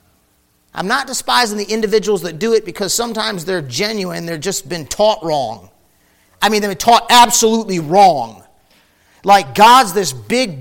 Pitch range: 165-225 Hz